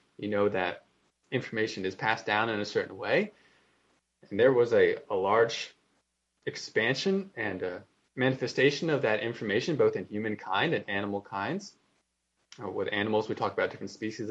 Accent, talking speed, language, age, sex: American, 155 wpm, English, 20-39, male